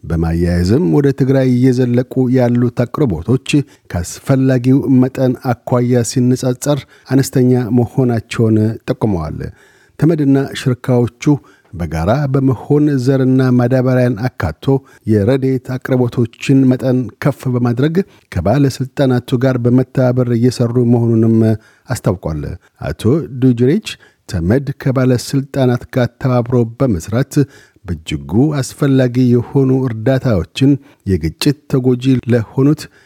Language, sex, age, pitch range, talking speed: Amharic, male, 50-69, 115-135 Hz, 85 wpm